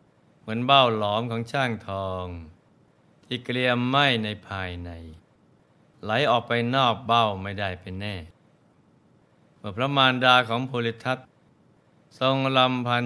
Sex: male